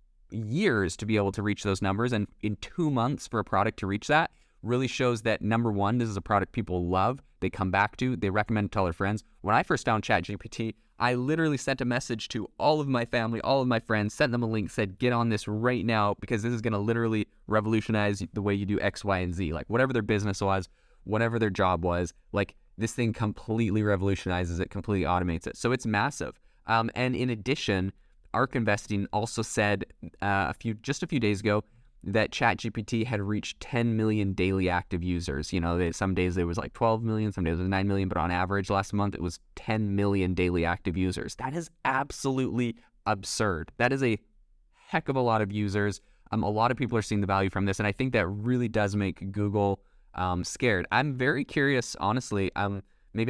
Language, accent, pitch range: English, American, 95-120 Hz